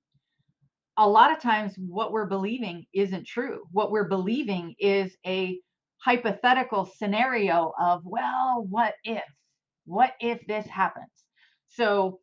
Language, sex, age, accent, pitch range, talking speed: English, female, 40-59, American, 185-255 Hz, 125 wpm